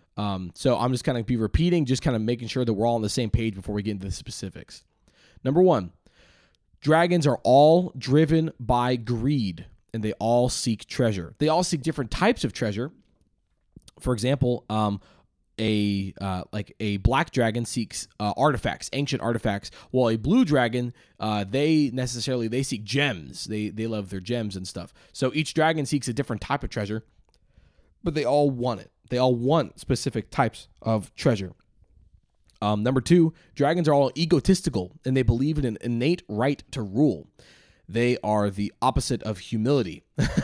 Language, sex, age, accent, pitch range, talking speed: English, male, 20-39, American, 105-135 Hz, 180 wpm